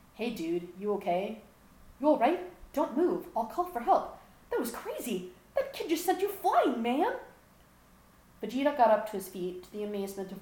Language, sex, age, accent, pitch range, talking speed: English, female, 40-59, American, 175-215 Hz, 190 wpm